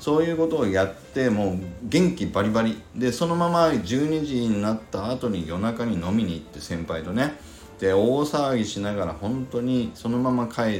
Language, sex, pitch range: Japanese, male, 95-130 Hz